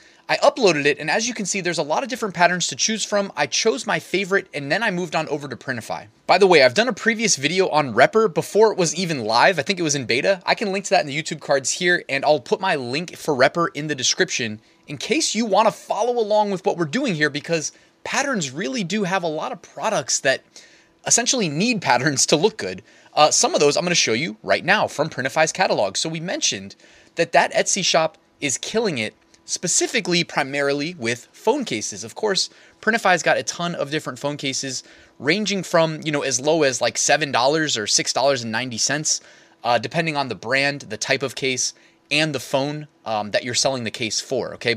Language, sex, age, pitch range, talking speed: English, male, 30-49, 135-190 Hz, 225 wpm